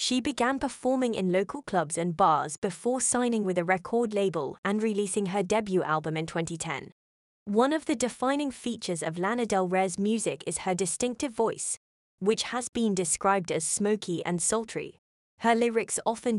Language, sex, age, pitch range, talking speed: English, female, 20-39, 180-235 Hz, 170 wpm